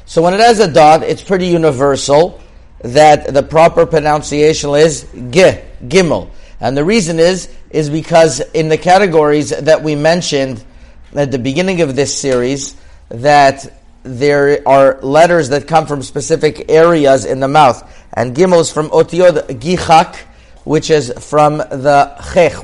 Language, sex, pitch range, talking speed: English, male, 140-170 Hz, 150 wpm